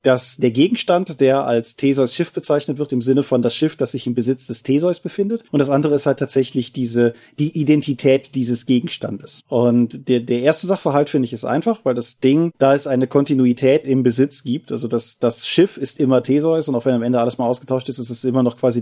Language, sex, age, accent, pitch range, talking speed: German, male, 30-49, German, 125-145 Hz, 230 wpm